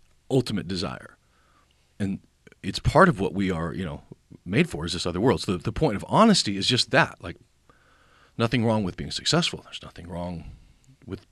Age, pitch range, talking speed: 40-59, 75-105 Hz, 190 wpm